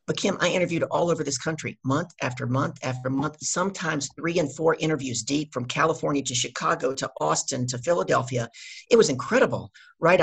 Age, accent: 50-69, American